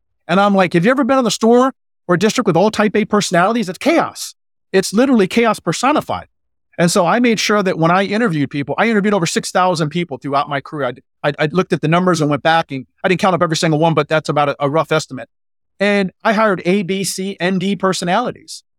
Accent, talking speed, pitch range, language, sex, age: American, 235 wpm, 155-205 Hz, English, male, 40-59